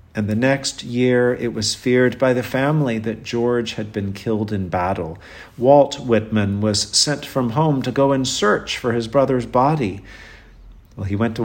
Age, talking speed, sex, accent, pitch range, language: 50-69, 185 wpm, male, American, 105-135 Hz, English